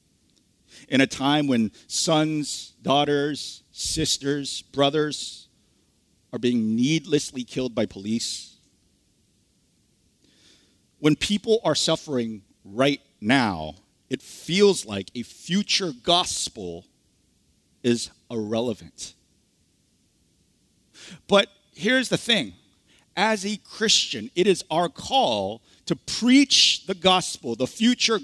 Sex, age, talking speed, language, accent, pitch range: male, 50-69, 95 wpm, English, American, 115-180 Hz